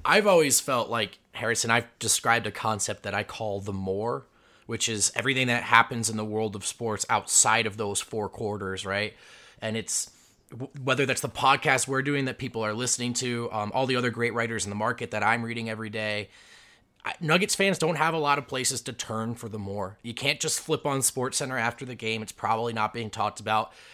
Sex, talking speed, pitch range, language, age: male, 215 wpm, 110-145 Hz, English, 20-39